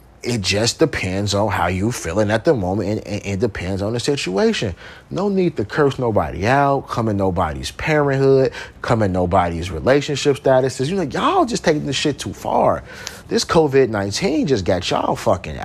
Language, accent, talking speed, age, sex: English, American, 175 wpm, 30-49, male